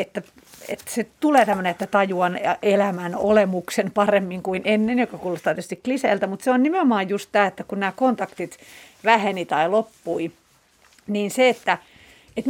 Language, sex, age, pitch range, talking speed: Finnish, female, 40-59, 185-235 Hz, 160 wpm